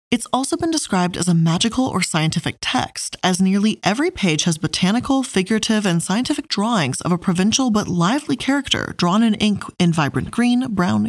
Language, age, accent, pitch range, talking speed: English, 20-39, American, 170-245 Hz, 180 wpm